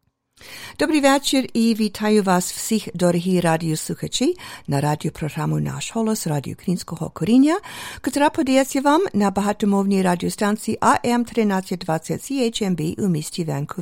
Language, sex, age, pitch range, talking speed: English, female, 50-69, 175-235 Hz, 80 wpm